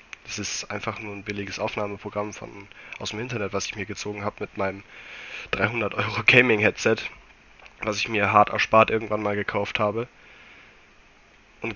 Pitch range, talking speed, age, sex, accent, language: 100-120 Hz, 150 wpm, 20-39, male, German, German